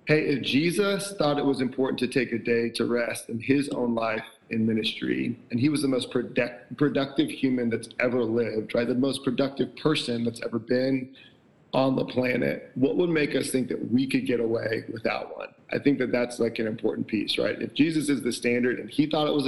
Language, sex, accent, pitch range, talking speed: English, male, American, 120-140 Hz, 220 wpm